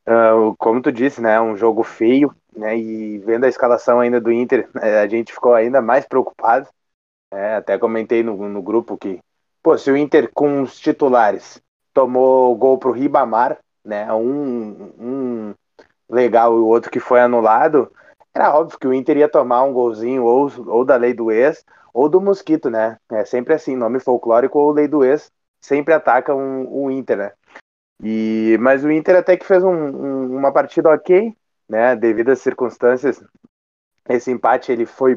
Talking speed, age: 175 wpm, 20-39